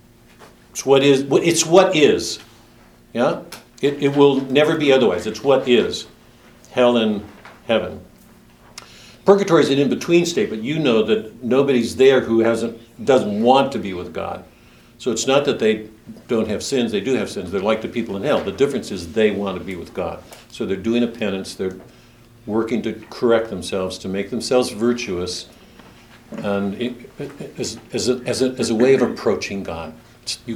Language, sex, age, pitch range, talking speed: English, male, 60-79, 105-135 Hz, 185 wpm